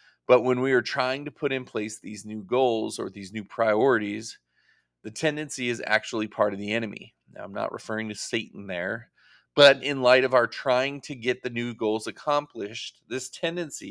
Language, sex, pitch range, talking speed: English, male, 105-130 Hz, 195 wpm